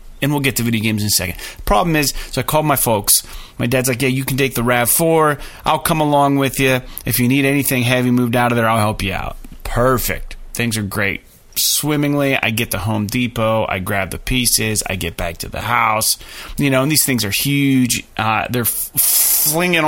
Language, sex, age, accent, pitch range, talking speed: English, male, 30-49, American, 110-135 Hz, 220 wpm